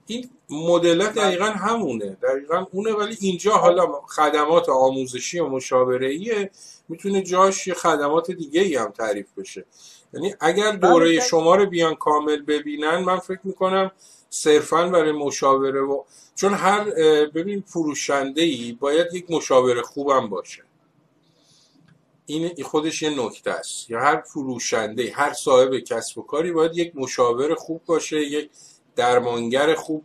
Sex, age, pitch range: male, 50-69, 135-175 Hz